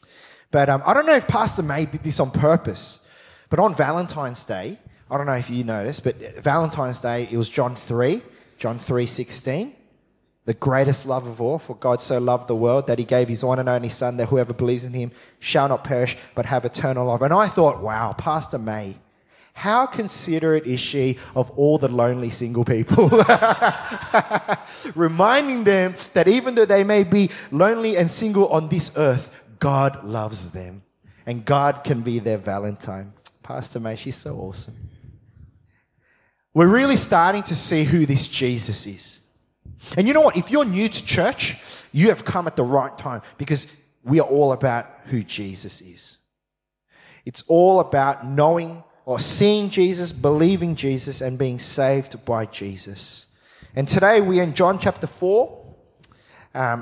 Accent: Australian